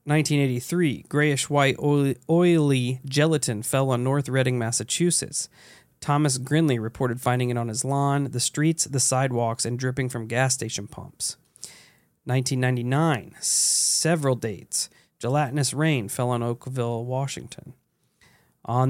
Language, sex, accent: English, male, American